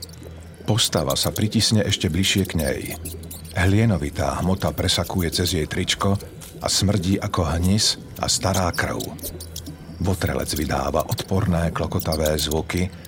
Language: Slovak